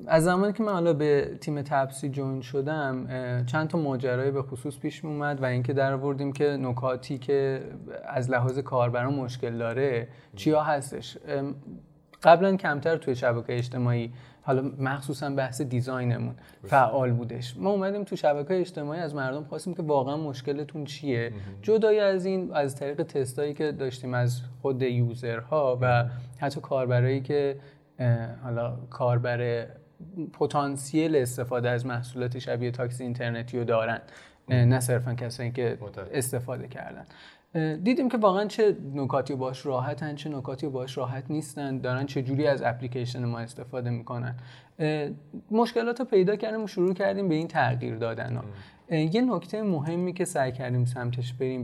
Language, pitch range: Persian, 125-150 Hz